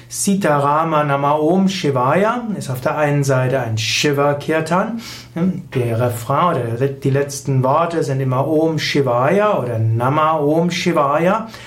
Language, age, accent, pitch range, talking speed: German, 60-79, German, 140-175 Hz, 125 wpm